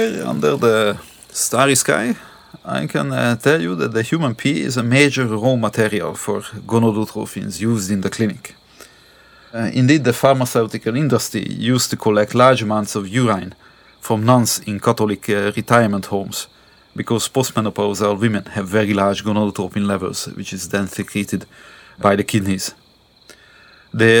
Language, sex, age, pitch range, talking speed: English, male, 40-59, 105-125 Hz, 145 wpm